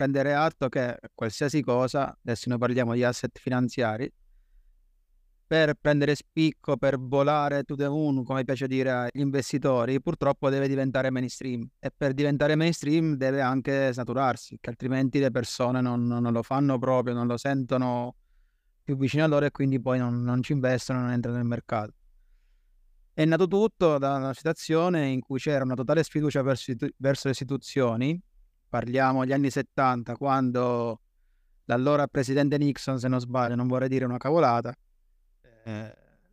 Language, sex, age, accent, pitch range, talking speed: Italian, male, 20-39, native, 120-140 Hz, 155 wpm